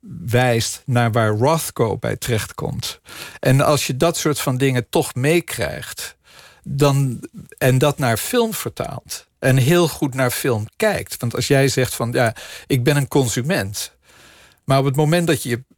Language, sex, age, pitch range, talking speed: Dutch, male, 50-69, 115-145 Hz, 165 wpm